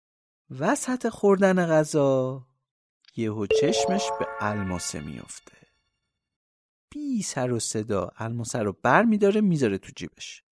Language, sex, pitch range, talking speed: Persian, male, 130-190 Hz, 110 wpm